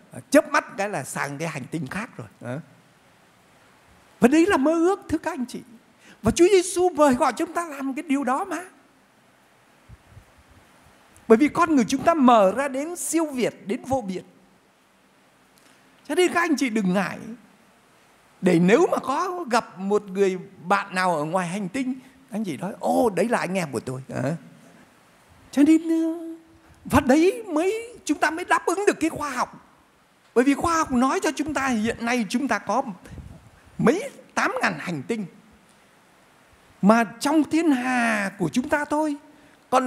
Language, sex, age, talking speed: Vietnamese, male, 60-79, 180 wpm